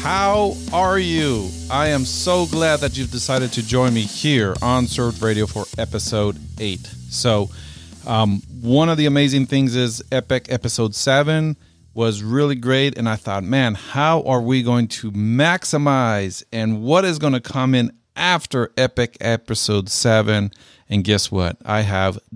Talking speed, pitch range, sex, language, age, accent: 160 wpm, 100-125 Hz, male, English, 40-59, American